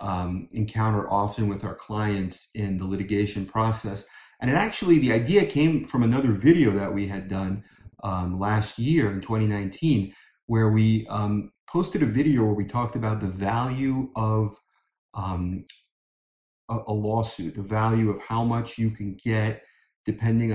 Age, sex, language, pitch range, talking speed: 30-49, male, English, 100-125 Hz, 160 wpm